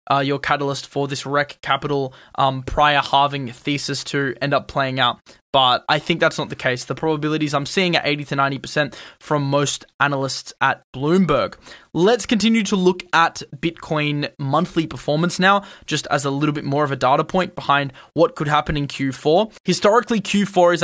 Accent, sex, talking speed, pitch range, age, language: Australian, male, 185 wpm, 140-170 Hz, 20-39, English